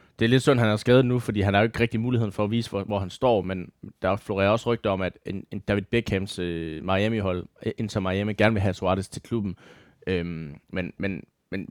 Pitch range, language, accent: 95-115 Hz, Danish, native